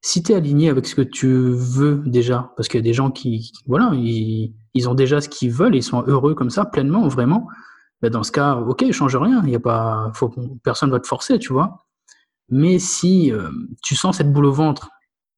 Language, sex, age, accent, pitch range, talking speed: French, male, 20-39, French, 125-150 Hz, 230 wpm